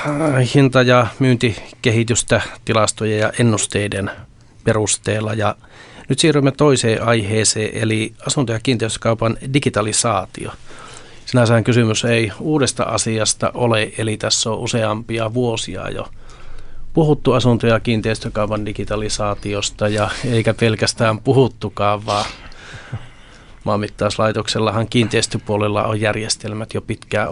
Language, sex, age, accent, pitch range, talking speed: Finnish, male, 30-49, native, 105-125 Hz, 100 wpm